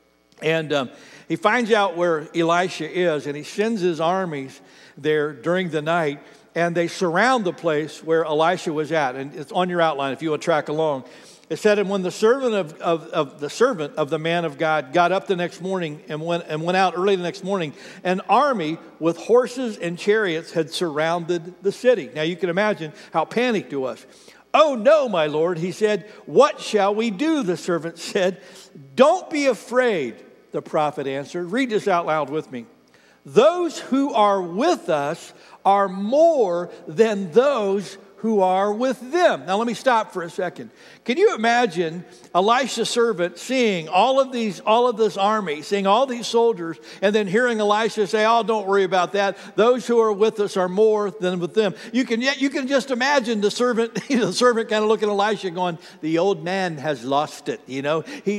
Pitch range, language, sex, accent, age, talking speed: 165-225 Hz, English, male, American, 60-79, 200 wpm